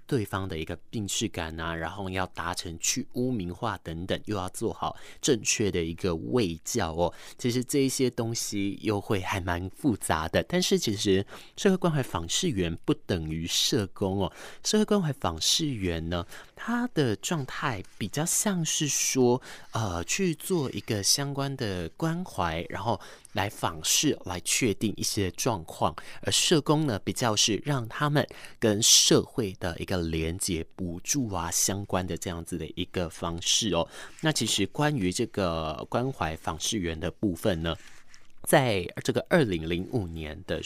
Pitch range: 90-130 Hz